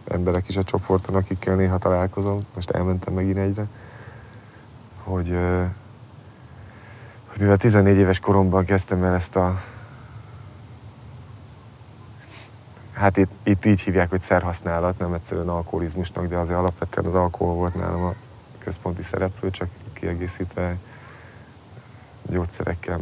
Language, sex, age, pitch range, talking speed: Hungarian, male, 30-49, 90-110 Hz, 115 wpm